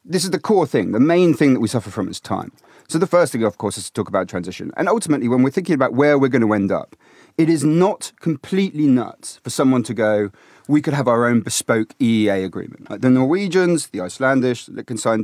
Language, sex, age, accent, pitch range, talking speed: English, male, 30-49, British, 110-155 Hz, 230 wpm